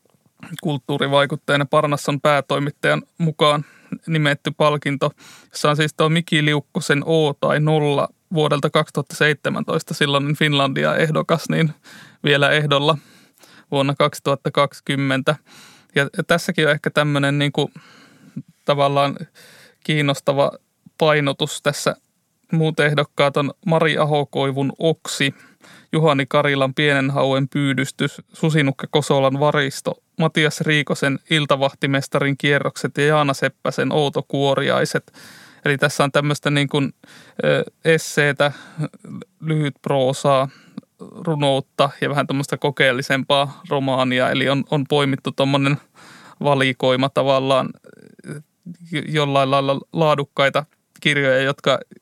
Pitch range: 140-155 Hz